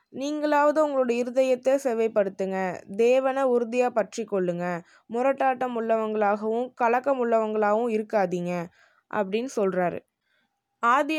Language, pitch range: Tamil, 205-255 Hz